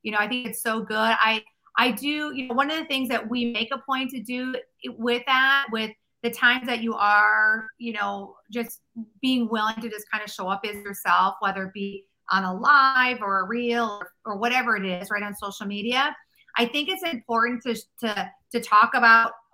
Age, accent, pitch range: 30-49, American, 210-255 Hz